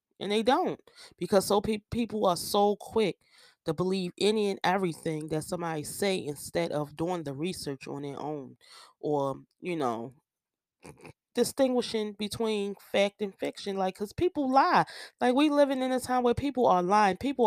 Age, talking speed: 20-39, 165 wpm